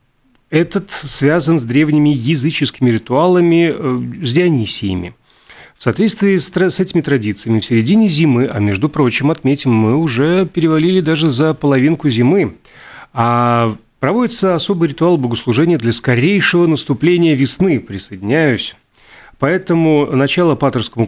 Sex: male